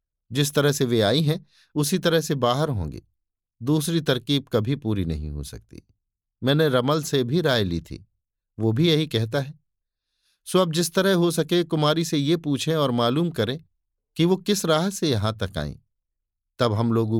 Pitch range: 95-155 Hz